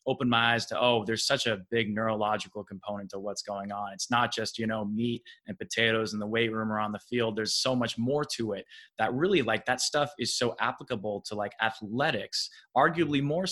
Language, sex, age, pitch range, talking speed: English, male, 20-39, 110-125 Hz, 220 wpm